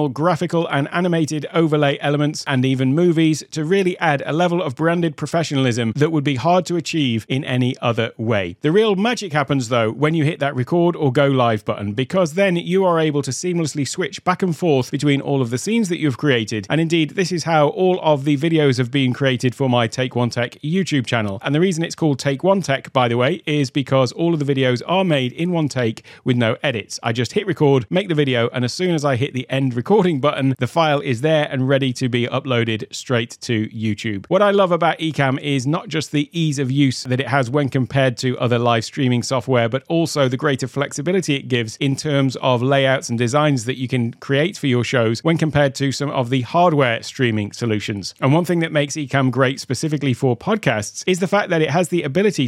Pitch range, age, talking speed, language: 130-165 Hz, 40-59, 230 wpm, English